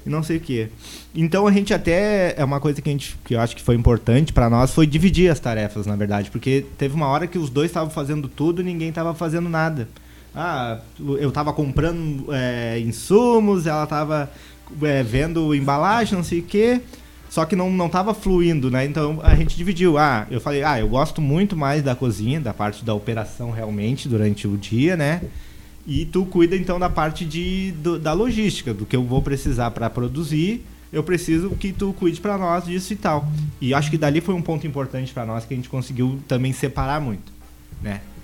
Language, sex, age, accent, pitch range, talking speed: Portuguese, male, 20-39, Brazilian, 125-175 Hz, 215 wpm